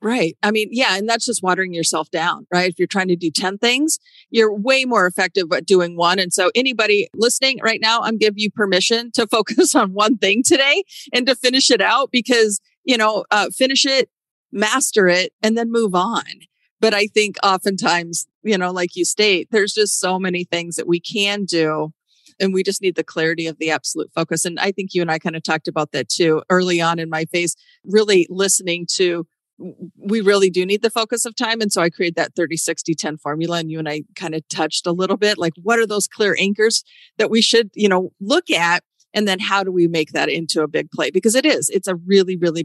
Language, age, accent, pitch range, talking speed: English, 40-59, American, 175-230 Hz, 230 wpm